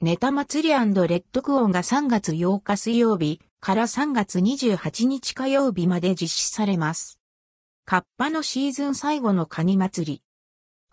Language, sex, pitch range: Japanese, female, 180-260 Hz